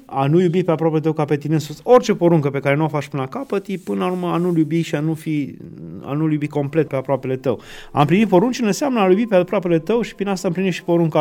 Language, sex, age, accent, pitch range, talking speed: Romanian, male, 30-49, native, 135-175 Hz, 285 wpm